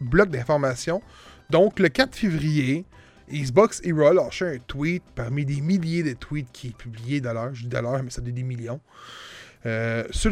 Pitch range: 130-185 Hz